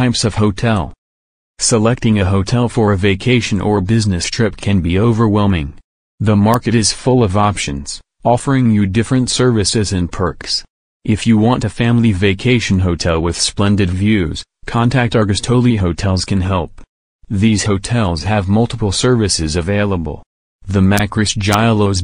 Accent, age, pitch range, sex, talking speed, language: American, 30-49, 95-115 Hz, male, 140 wpm, English